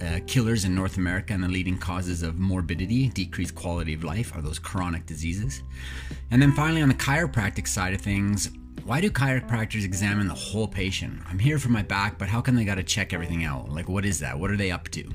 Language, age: English, 30-49